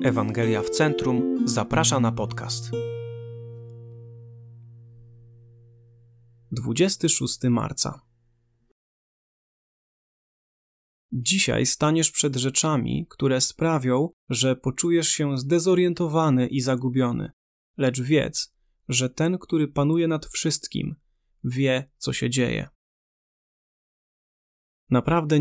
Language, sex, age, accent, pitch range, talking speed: Polish, male, 20-39, native, 125-150 Hz, 80 wpm